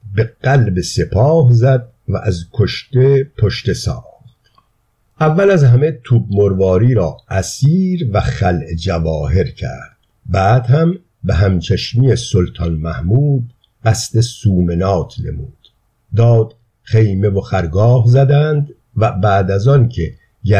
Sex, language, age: male, Persian, 50-69